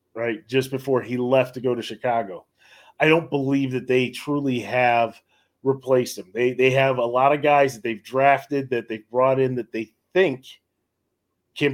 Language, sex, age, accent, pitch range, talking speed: English, male, 30-49, American, 120-140 Hz, 185 wpm